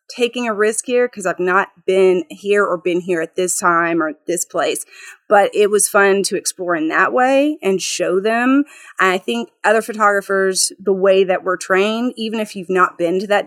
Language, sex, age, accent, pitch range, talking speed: English, female, 30-49, American, 175-205 Hz, 210 wpm